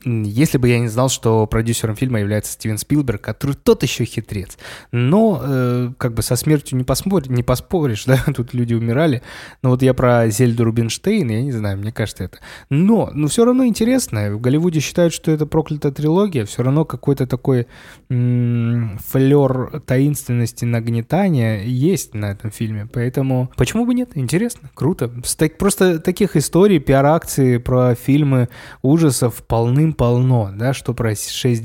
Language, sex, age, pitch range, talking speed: Russian, male, 20-39, 115-145 Hz, 155 wpm